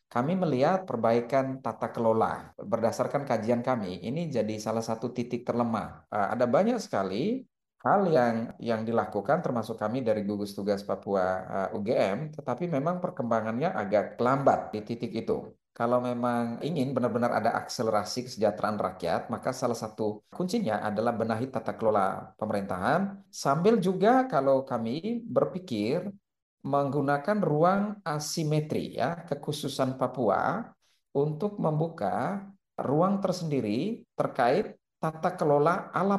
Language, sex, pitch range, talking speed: Indonesian, male, 110-150 Hz, 120 wpm